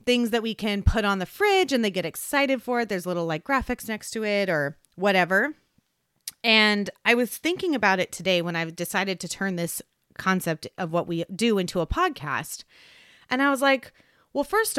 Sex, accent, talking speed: female, American, 205 wpm